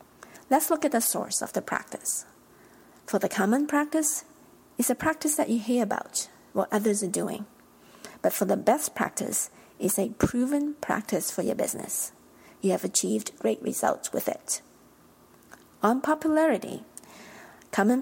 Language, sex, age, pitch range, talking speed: English, female, 50-69, 200-280 Hz, 150 wpm